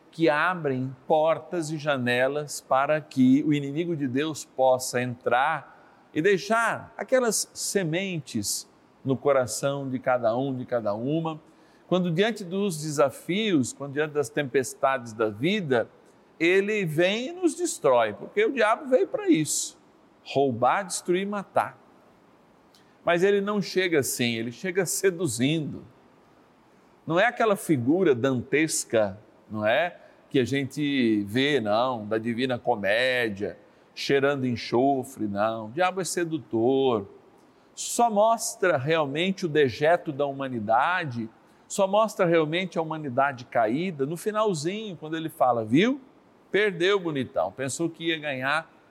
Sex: male